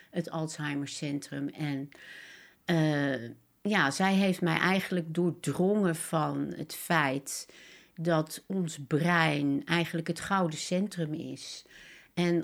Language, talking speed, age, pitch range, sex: Dutch, 110 wpm, 60-79, 150-180 Hz, female